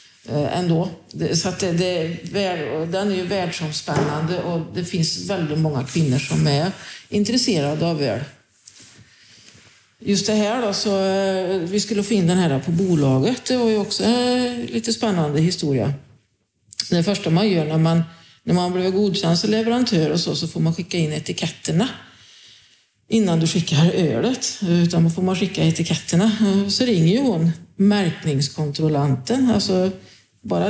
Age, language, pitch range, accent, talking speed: 50-69, Swedish, 150-200 Hz, native, 155 wpm